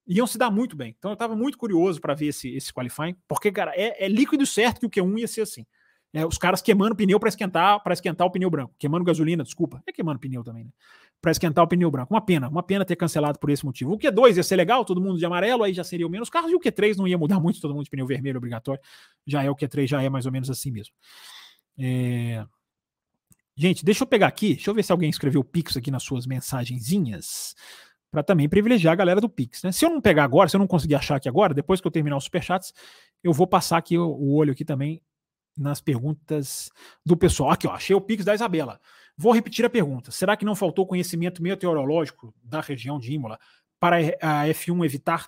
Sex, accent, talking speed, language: male, Brazilian, 240 wpm, Portuguese